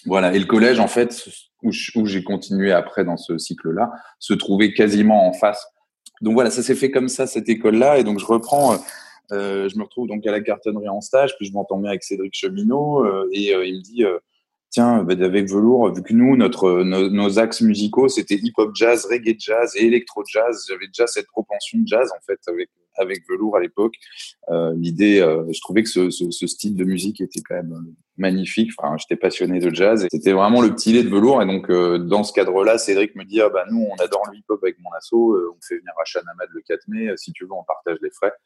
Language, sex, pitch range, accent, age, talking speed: French, male, 95-120 Hz, French, 20-39, 240 wpm